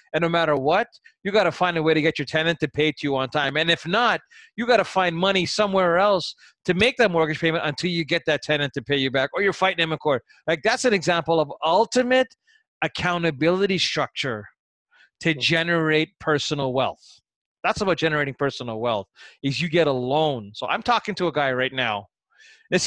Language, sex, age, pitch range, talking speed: English, male, 30-49, 140-175 Hz, 215 wpm